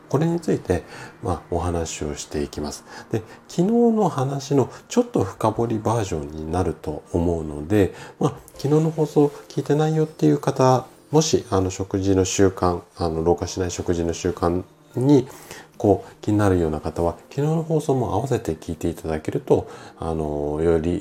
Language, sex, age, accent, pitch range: Japanese, male, 40-59, native, 80-130 Hz